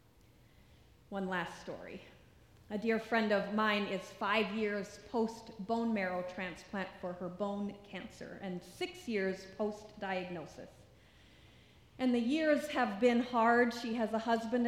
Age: 40-59